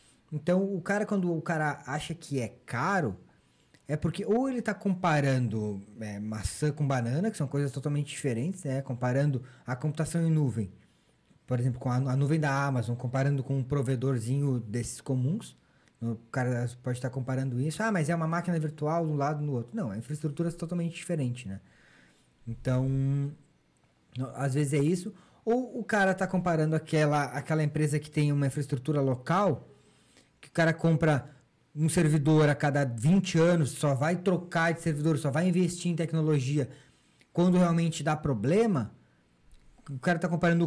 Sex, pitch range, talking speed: male, 135-175 Hz, 175 wpm